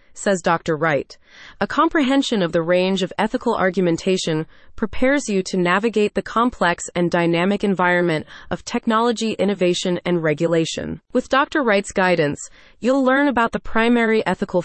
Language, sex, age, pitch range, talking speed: English, female, 30-49, 170-230 Hz, 145 wpm